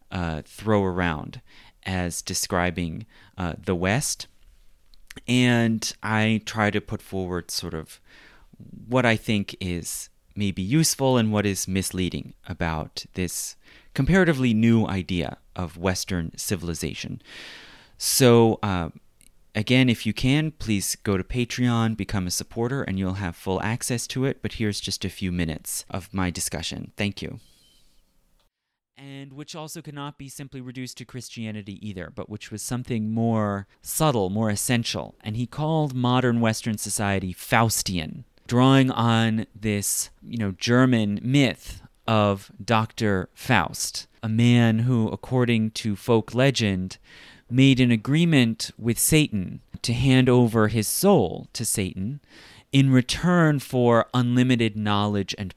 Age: 30-49